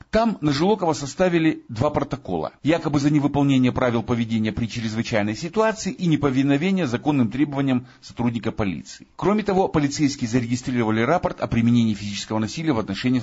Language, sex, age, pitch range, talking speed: Russian, male, 50-69, 120-165 Hz, 140 wpm